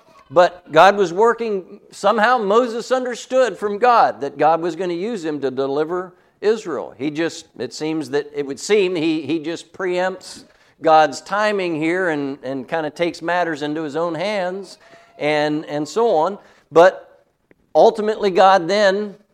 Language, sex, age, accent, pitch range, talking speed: English, male, 50-69, American, 160-220 Hz, 160 wpm